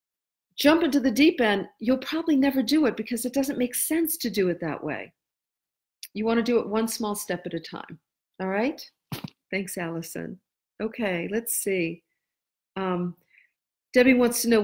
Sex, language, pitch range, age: female, English, 180-225 Hz, 50-69